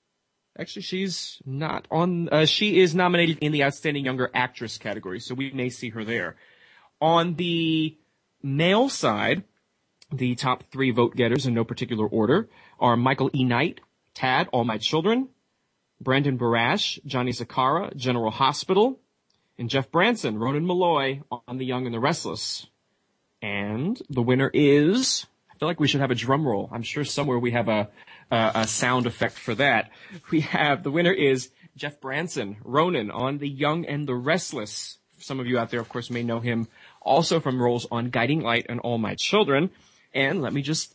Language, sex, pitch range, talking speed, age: English, male, 120-155 Hz, 175 wpm, 30-49